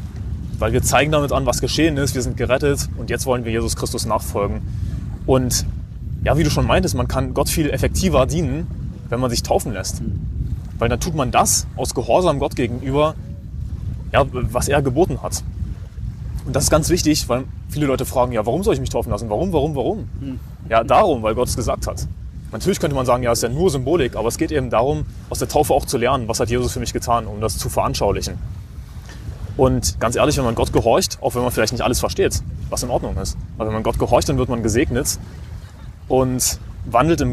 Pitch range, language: 105-135 Hz, German